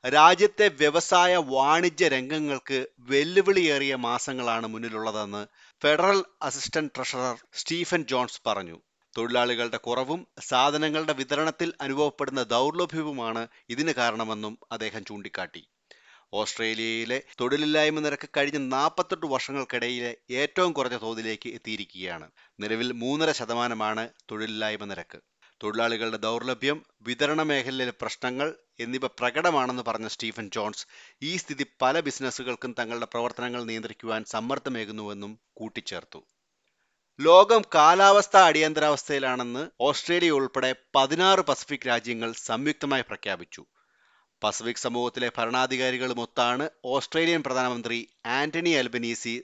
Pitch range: 115-150 Hz